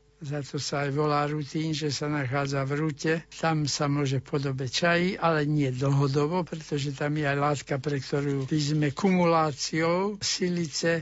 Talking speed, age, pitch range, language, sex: 160 wpm, 60-79, 145-180 Hz, Slovak, male